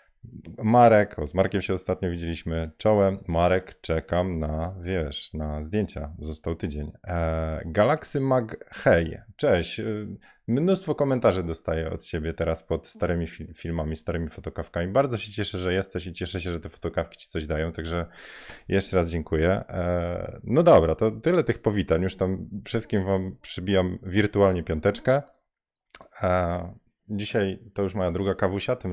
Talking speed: 155 wpm